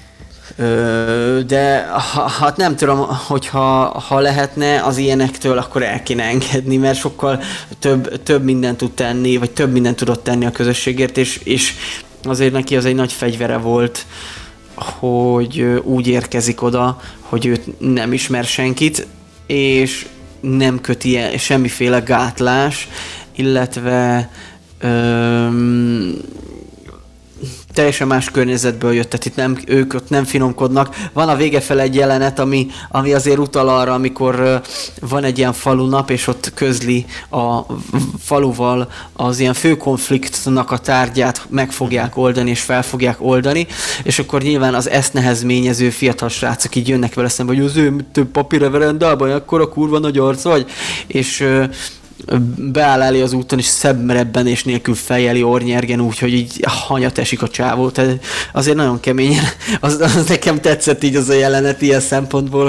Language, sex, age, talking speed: Hungarian, male, 20-39, 145 wpm